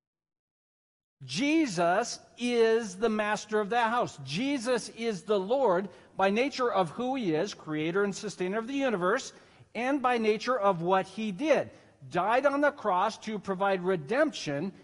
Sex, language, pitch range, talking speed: male, English, 175-230 Hz, 150 wpm